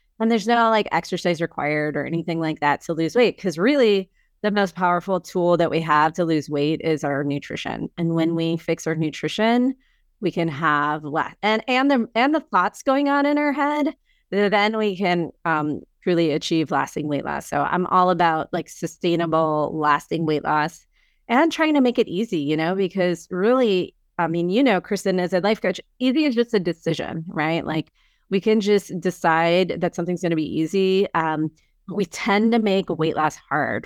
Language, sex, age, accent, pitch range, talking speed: English, female, 30-49, American, 160-205 Hz, 200 wpm